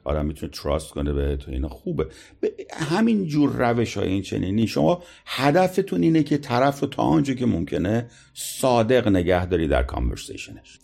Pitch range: 90-140 Hz